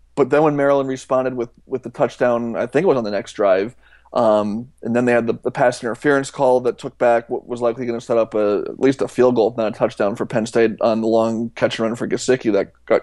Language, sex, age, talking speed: English, male, 20-39, 270 wpm